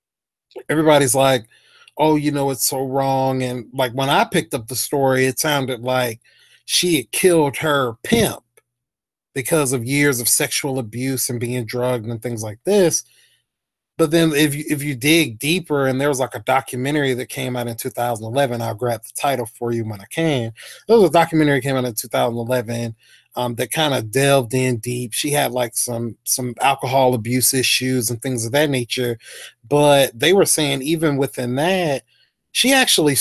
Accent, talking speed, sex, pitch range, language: American, 185 wpm, male, 125-150 Hz, English